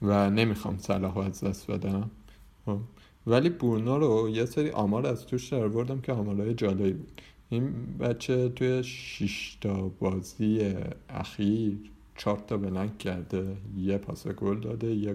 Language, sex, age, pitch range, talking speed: Persian, male, 50-69, 95-110 Hz, 145 wpm